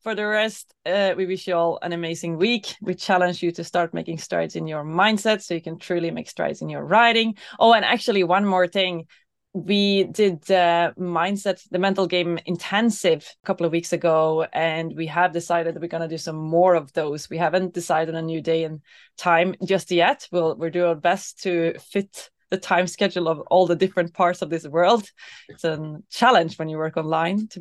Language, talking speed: English, 220 wpm